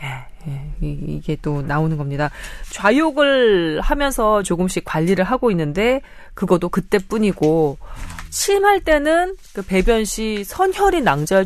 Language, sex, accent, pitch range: Korean, female, native, 160-245 Hz